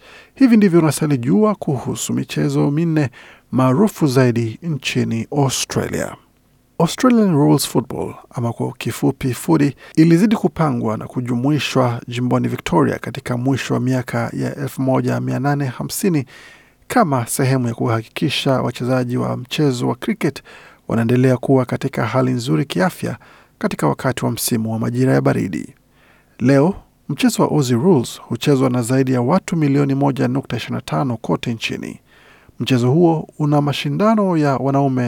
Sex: male